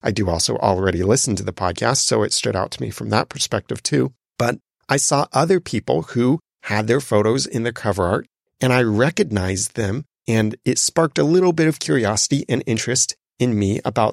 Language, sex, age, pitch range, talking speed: English, male, 30-49, 105-145 Hz, 205 wpm